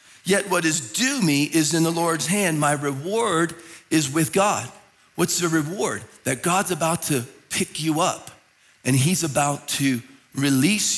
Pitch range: 130-160 Hz